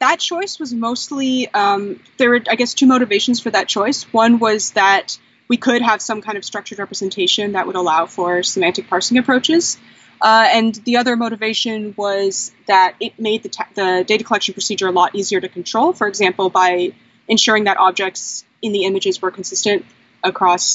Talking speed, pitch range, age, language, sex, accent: 180 wpm, 195-250 Hz, 20-39, English, female, American